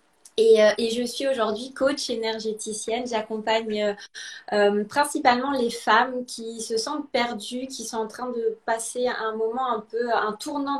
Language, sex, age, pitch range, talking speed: French, female, 20-39, 210-245 Hz, 160 wpm